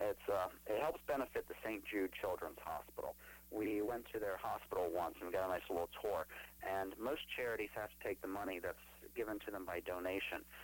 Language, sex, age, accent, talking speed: English, male, 40-59, American, 210 wpm